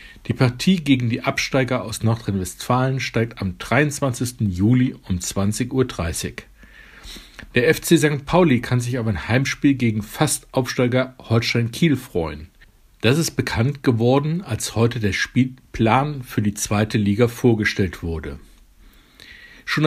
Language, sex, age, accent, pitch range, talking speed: German, male, 60-79, German, 105-135 Hz, 130 wpm